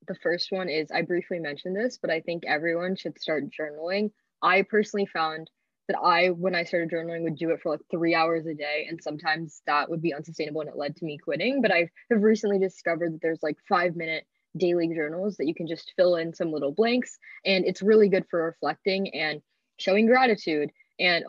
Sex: female